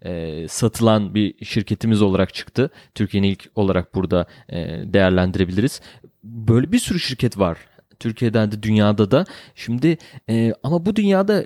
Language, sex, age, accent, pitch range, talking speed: Turkish, male, 30-49, native, 110-155 Hz, 120 wpm